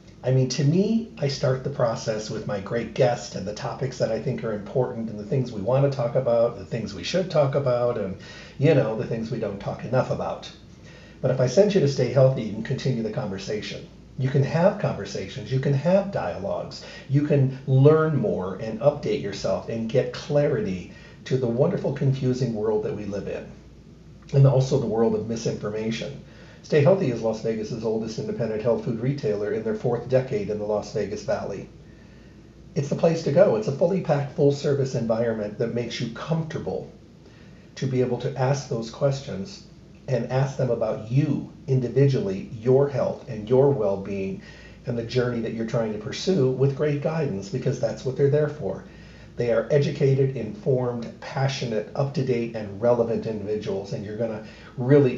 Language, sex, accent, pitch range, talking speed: English, male, American, 115-145 Hz, 190 wpm